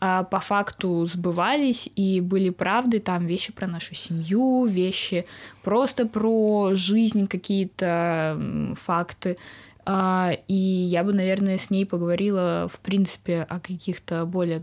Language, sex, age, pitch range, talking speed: Russian, female, 20-39, 175-205 Hz, 120 wpm